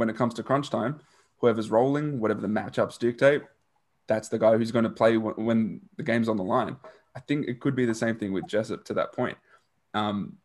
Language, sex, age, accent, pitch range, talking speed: English, male, 20-39, Australian, 110-140 Hz, 225 wpm